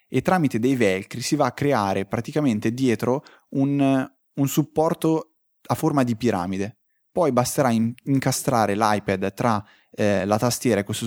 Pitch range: 105-130 Hz